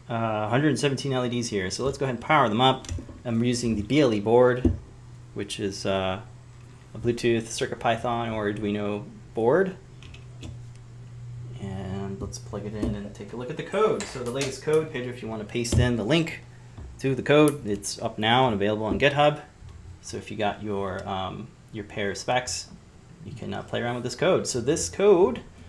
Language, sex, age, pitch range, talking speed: English, male, 30-49, 100-125 Hz, 190 wpm